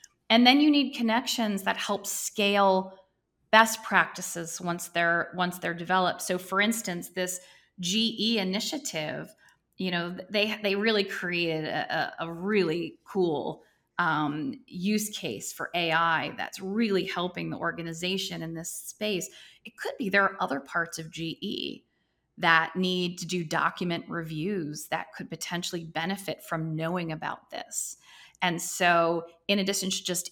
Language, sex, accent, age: English, female, American, 30-49